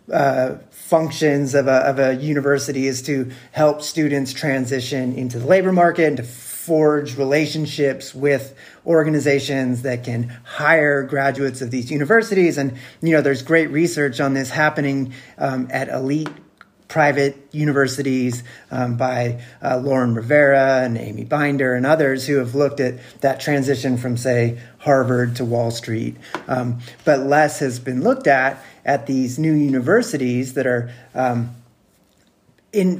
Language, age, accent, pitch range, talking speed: English, 30-49, American, 130-155 Hz, 145 wpm